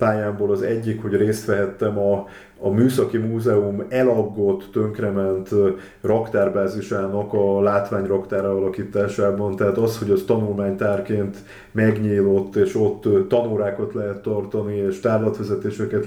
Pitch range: 100-115 Hz